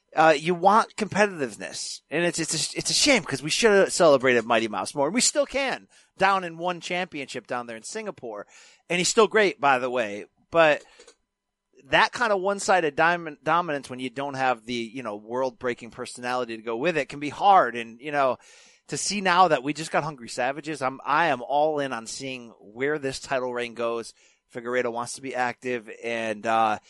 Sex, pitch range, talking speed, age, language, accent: male, 120-165 Hz, 205 wpm, 30-49, English, American